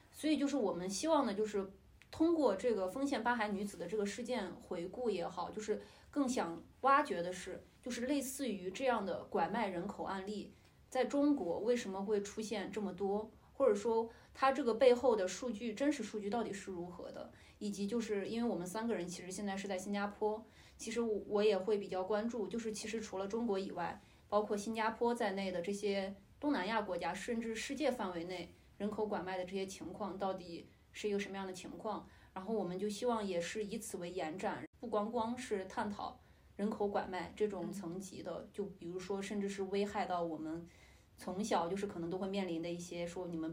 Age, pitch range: 20-39, 190-225 Hz